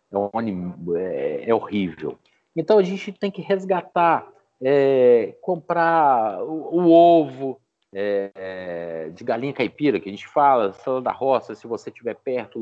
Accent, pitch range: Brazilian, 135-175 Hz